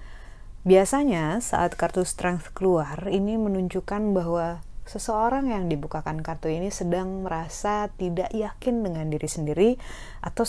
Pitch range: 160-205 Hz